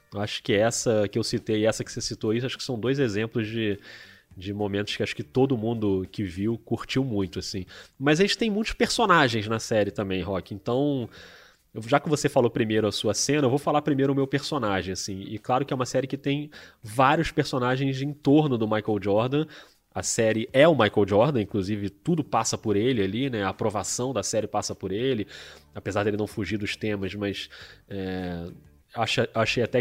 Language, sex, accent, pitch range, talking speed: Portuguese, male, Brazilian, 105-140 Hz, 200 wpm